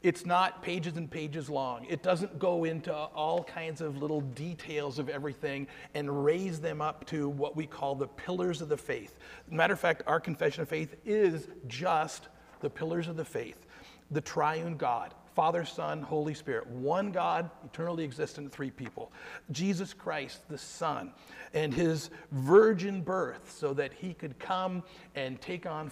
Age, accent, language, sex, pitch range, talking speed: 40-59, American, English, male, 140-180 Hz, 170 wpm